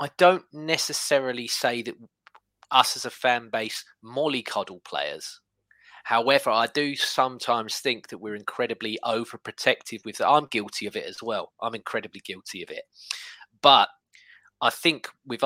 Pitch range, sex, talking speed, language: 110-145 Hz, male, 150 wpm, English